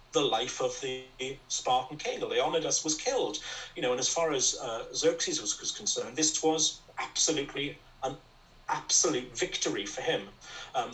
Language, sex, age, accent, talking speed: English, male, 40-59, British, 160 wpm